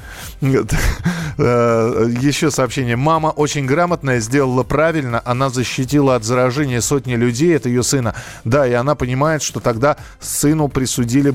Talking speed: 130 wpm